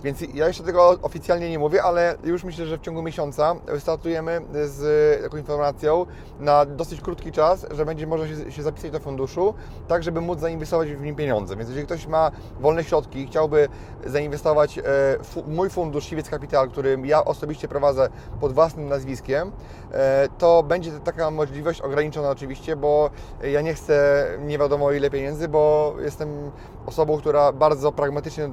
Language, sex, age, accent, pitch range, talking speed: Polish, male, 30-49, native, 135-160 Hz, 165 wpm